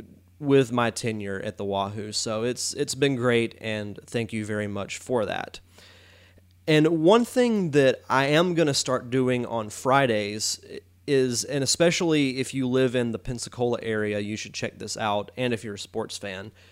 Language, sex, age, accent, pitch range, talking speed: English, male, 30-49, American, 105-130 Hz, 185 wpm